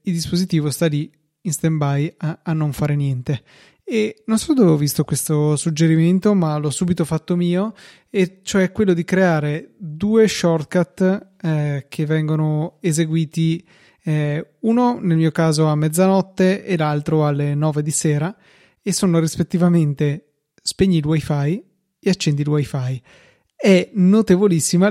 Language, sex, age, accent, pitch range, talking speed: Italian, male, 20-39, native, 155-185 Hz, 145 wpm